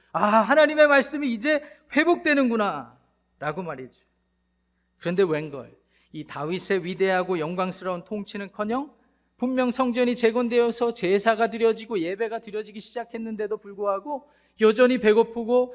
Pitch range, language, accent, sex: 165-230 Hz, Korean, native, male